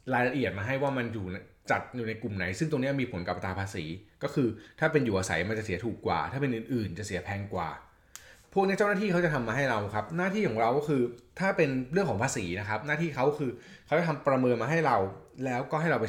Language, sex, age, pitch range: Thai, male, 20-39, 105-150 Hz